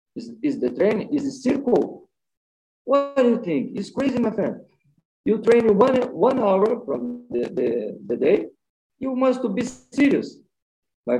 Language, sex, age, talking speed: English, male, 50-69, 155 wpm